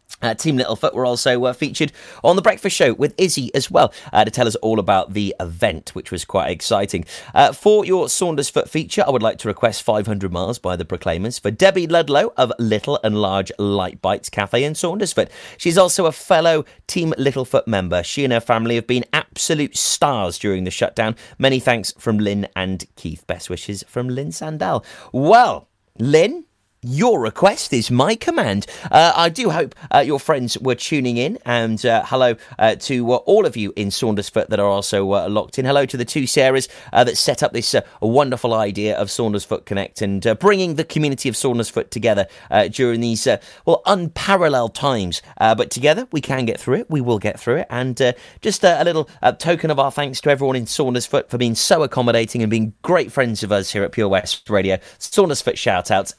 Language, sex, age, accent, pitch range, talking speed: English, male, 30-49, British, 105-145 Hz, 205 wpm